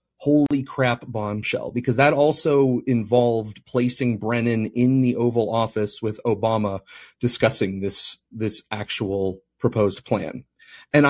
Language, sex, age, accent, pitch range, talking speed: English, male, 30-49, American, 110-130 Hz, 120 wpm